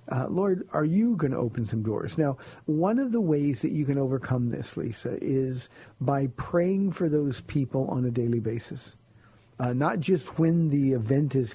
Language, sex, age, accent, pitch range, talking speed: English, male, 50-69, American, 125-155 Hz, 190 wpm